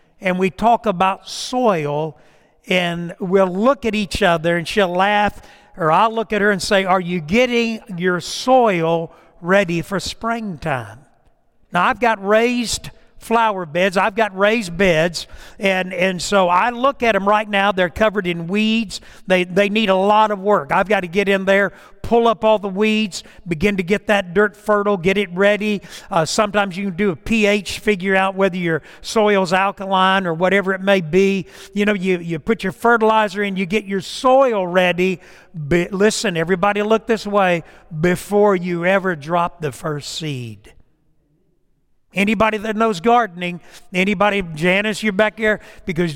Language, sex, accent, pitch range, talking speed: English, male, American, 175-215 Hz, 175 wpm